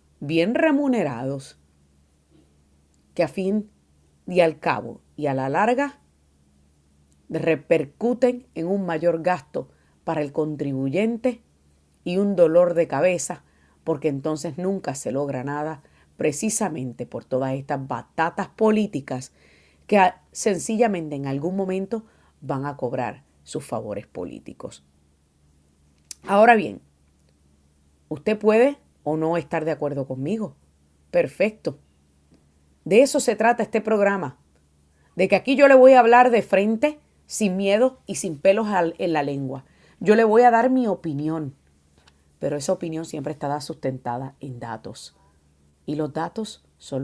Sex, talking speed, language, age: female, 130 wpm, Spanish, 40-59